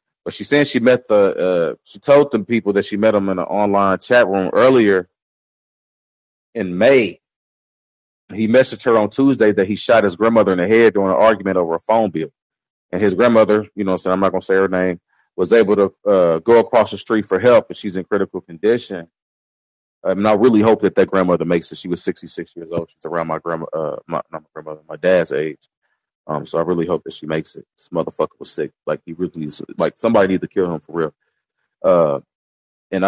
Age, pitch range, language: 30-49, 90-115 Hz, English